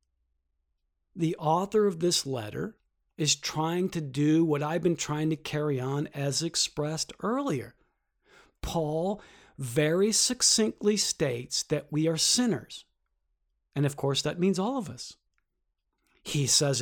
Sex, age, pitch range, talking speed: male, 50-69, 145-180 Hz, 130 wpm